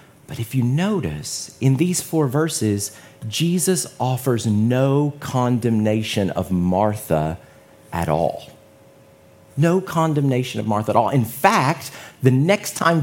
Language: English